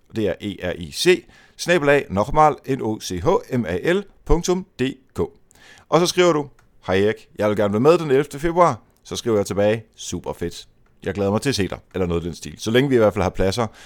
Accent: native